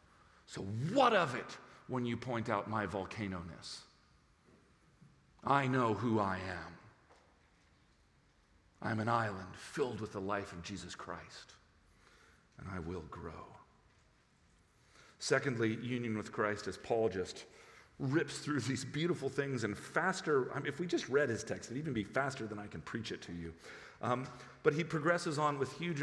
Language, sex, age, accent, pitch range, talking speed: English, male, 50-69, American, 110-180 Hz, 155 wpm